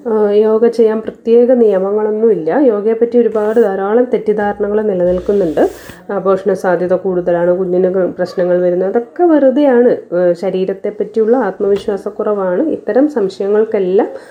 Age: 20-39